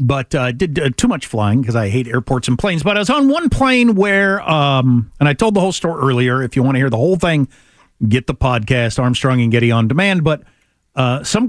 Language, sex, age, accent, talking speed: English, male, 50-69, American, 245 wpm